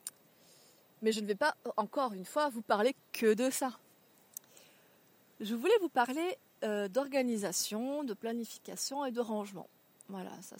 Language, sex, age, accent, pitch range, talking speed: French, female, 30-49, French, 195-260 Hz, 145 wpm